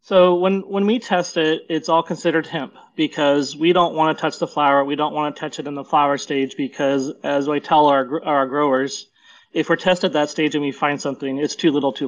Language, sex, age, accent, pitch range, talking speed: English, male, 30-49, American, 140-160 Hz, 245 wpm